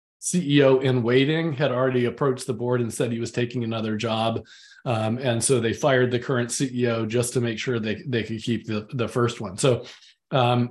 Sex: male